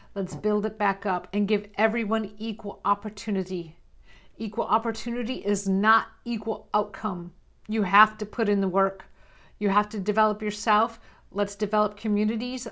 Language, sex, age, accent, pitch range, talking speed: English, female, 50-69, American, 185-220 Hz, 145 wpm